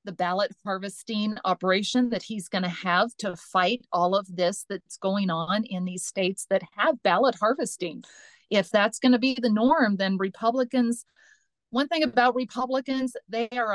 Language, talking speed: English, 160 wpm